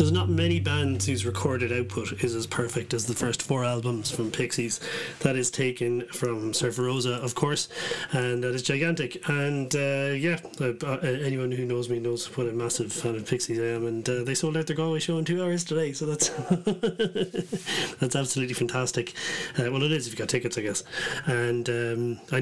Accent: Irish